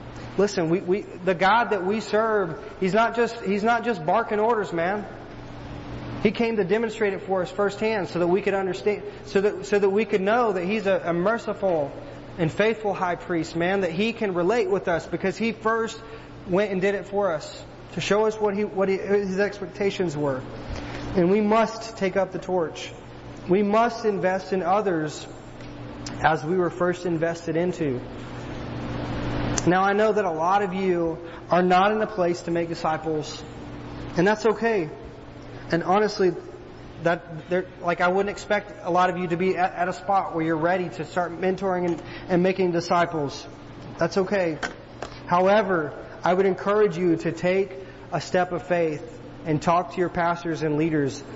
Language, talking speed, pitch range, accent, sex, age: English, 180 wpm, 160-200 Hz, American, male, 30-49